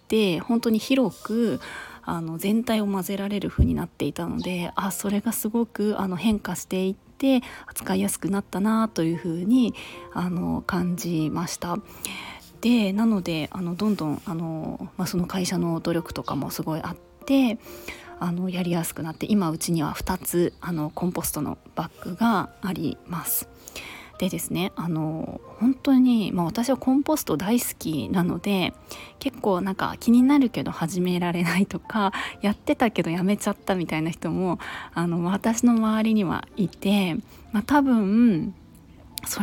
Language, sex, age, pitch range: Japanese, female, 20-39, 175-235 Hz